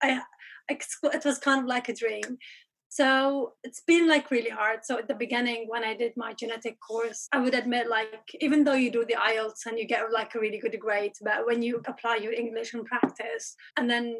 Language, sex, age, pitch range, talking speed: English, female, 20-39, 225-255 Hz, 215 wpm